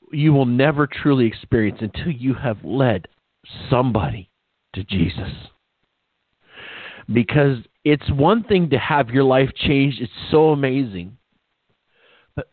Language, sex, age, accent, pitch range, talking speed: English, male, 50-69, American, 140-220 Hz, 120 wpm